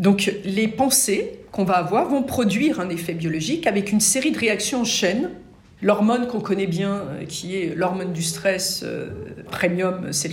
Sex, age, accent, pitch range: female, 50-69, French, 170-215 Hz